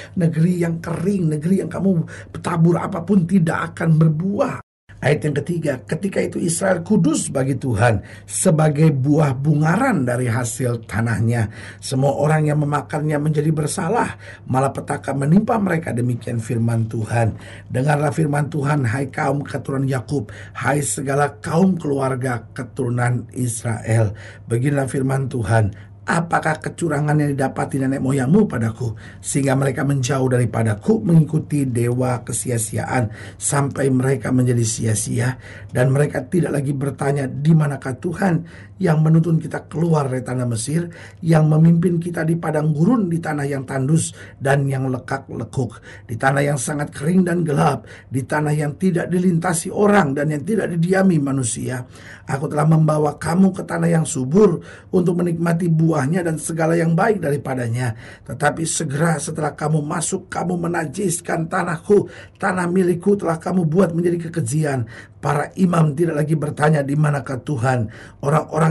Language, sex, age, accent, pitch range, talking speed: Indonesian, male, 50-69, native, 130-165 Hz, 140 wpm